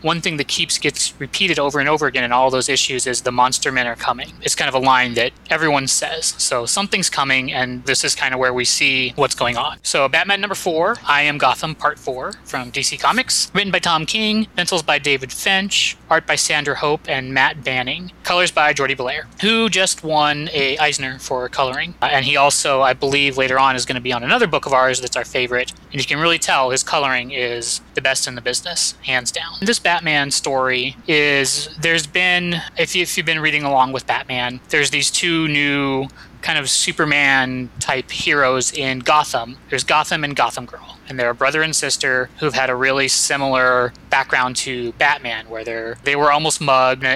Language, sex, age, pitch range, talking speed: English, male, 20-39, 130-155 Hz, 210 wpm